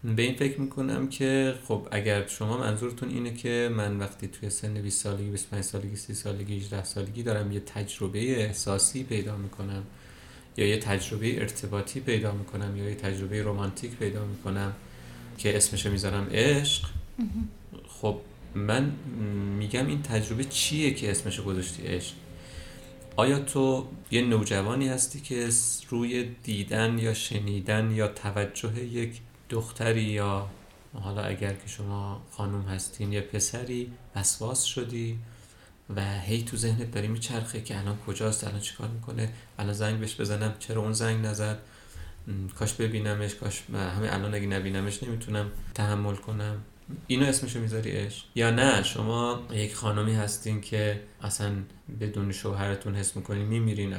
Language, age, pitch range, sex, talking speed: Persian, 30-49, 100-115 Hz, male, 145 wpm